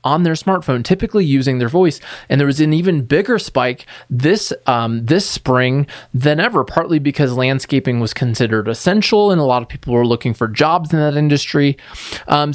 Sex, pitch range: male, 130-170 Hz